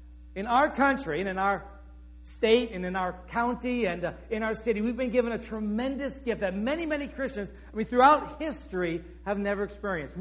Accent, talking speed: American, 190 wpm